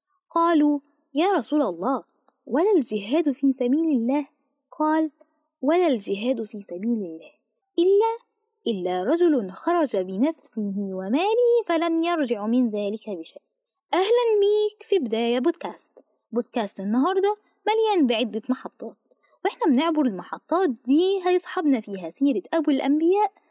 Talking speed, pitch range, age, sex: 115 wpm, 225-330 Hz, 20-39, female